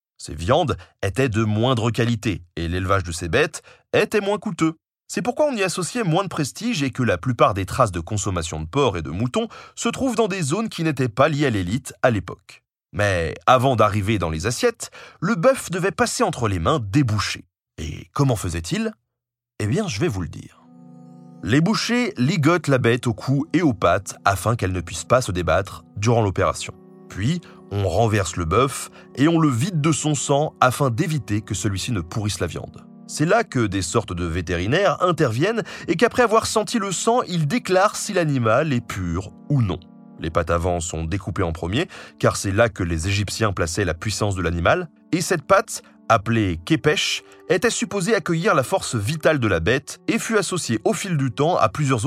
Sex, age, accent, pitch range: male, 30-49, French, 95-165 Hz